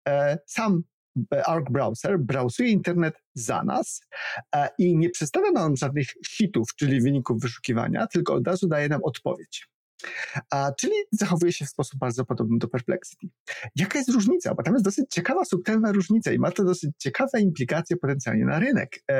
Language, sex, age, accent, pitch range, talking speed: Polish, male, 40-59, native, 135-185 Hz, 155 wpm